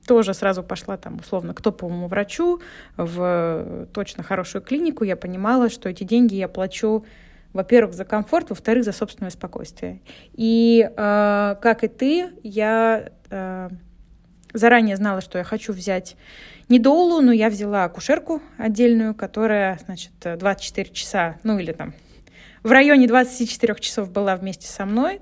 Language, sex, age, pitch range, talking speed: Russian, female, 20-39, 180-230 Hz, 145 wpm